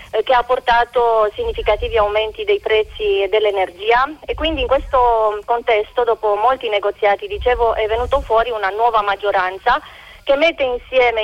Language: Italian